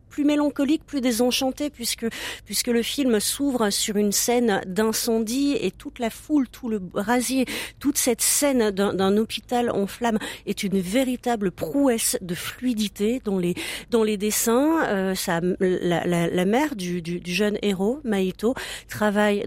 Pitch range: 190-240 Hz